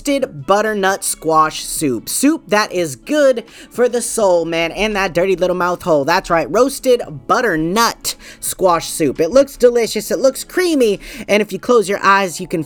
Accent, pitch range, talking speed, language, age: American, 165-215 Hz, 180 wpm, English, 20-39